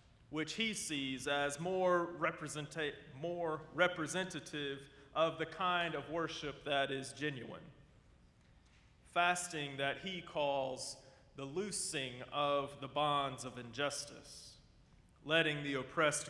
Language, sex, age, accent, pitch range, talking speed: English, male, 30-49, American, 130-165 Hz, 105 wpm